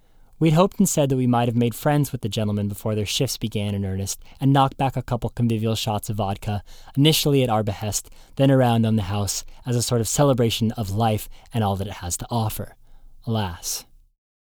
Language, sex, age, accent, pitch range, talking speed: English, male, 20-39, American, 110-130 Hz, 215 wpm